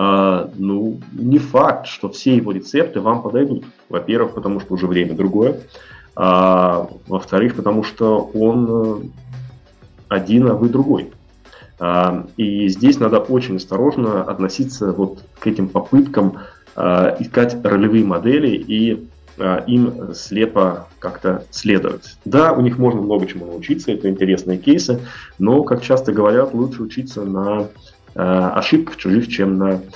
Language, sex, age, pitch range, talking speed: Russian, male, 20-39, 95-120 Hz, 135 wpm